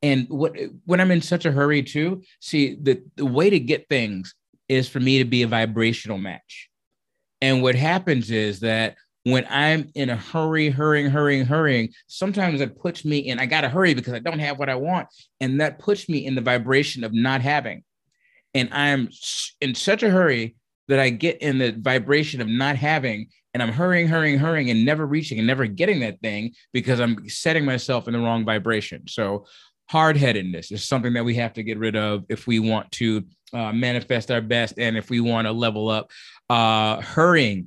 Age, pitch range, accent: 30-49, 115-150 Hz, American